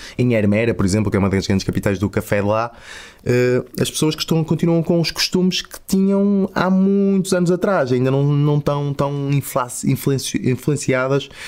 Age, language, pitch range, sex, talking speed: 20-39, Portuguese, 100-120 Hz, male, 160 wpm